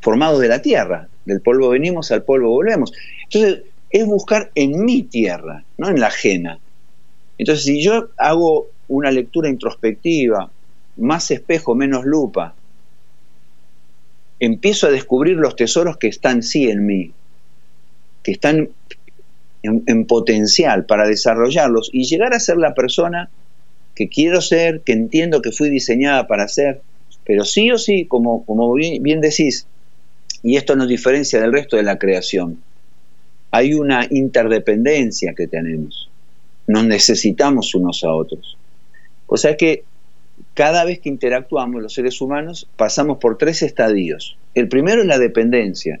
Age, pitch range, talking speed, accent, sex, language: 50-69, 100-155 Hz, 145 wpm, Argentinian, male, Spanish